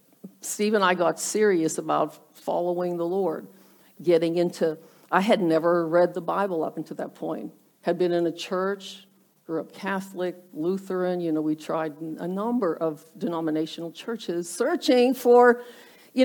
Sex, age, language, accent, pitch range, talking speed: female, 50-69, English, American, 170-215 Hz, 150 wpm